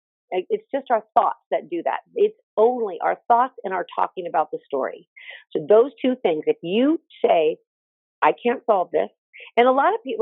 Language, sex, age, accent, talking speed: English, female, 40-59, American, 195 wpm